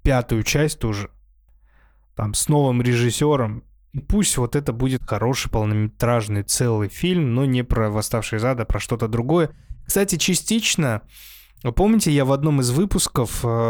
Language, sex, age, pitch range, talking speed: Russian, male, 20-39, 110-145 Hz, 145 wpm